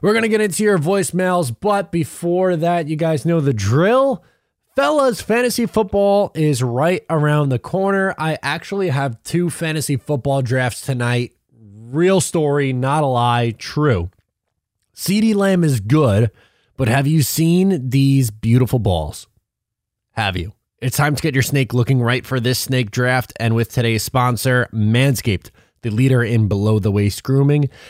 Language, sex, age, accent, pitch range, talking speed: English, male, 20-39, American, 110-155 Hz, 155 wpm